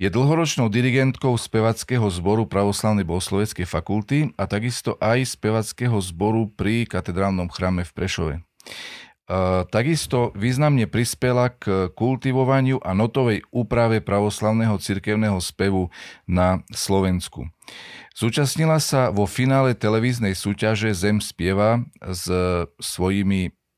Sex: male